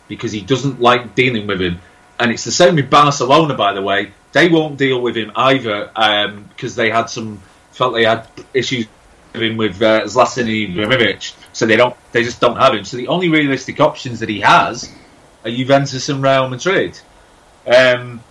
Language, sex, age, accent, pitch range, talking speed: English, male, 30-49, British, 110-135 Hz, 195 wpm